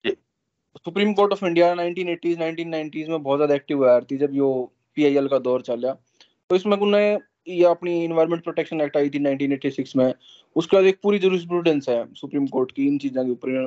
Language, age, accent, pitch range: Hindi, 20-39, native, 140-190 Hz